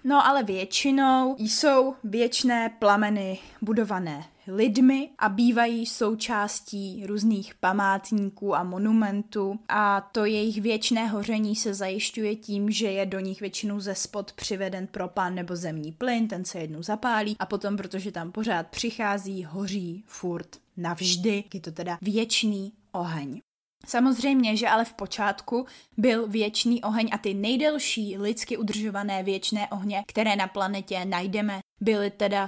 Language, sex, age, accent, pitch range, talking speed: Czech, female, 20-39, native, 195-235 Hz, 135 wpm